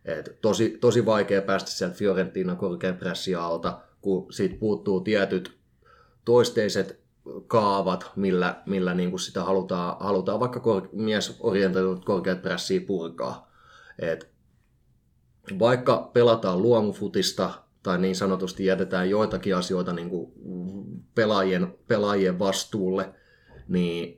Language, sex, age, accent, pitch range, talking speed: Finnish, male, 30-49, native, 90-100 Hz, 100 wpm